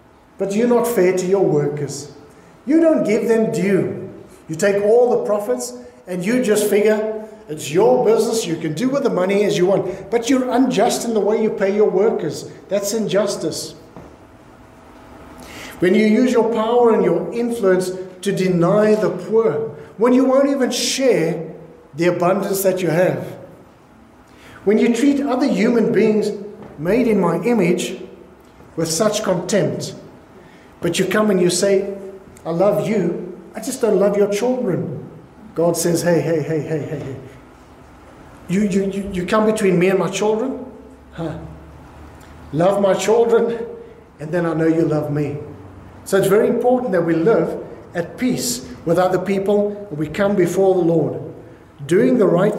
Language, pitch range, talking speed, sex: English, 170-215 Hz, 165 wpm, male